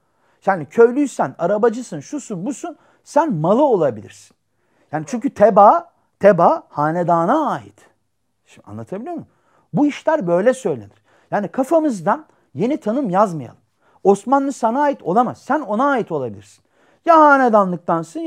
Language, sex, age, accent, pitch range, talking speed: Turkish, male, 40-59, native, 170-260 Hz, 120 wpm